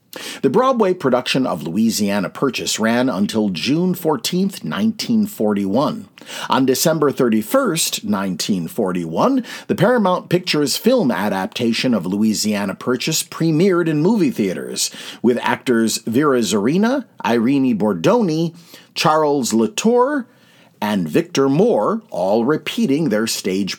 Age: 50-69